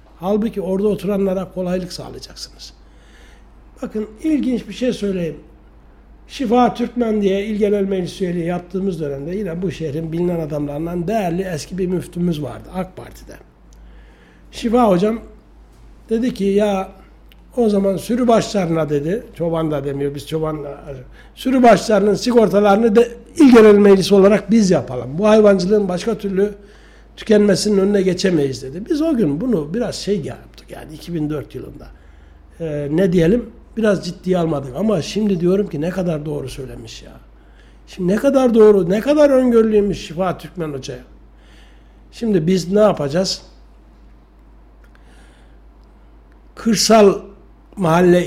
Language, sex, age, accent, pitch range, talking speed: Turkish, male, 60-79, native, 145-210 Hz, 125 wpm